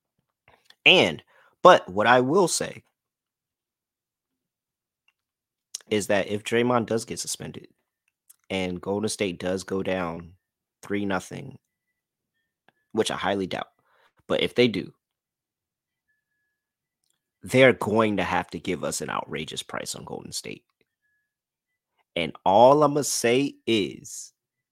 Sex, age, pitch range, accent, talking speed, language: male, 30-49, 95-120 Hz, American, 115 wpm, English